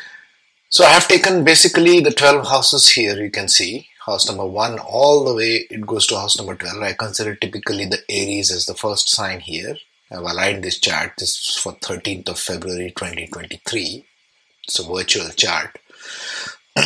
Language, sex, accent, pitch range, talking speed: English, male, Indian, 105-145 Hz, 180 wpm